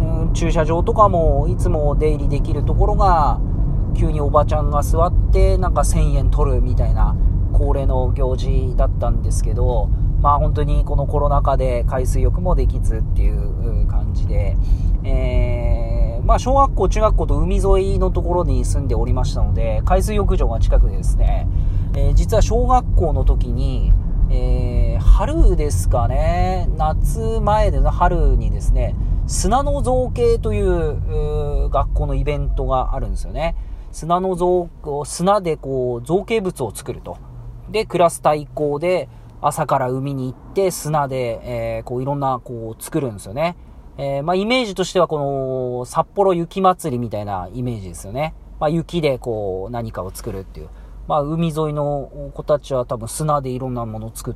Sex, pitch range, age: male, 95-145 Hz, 40-59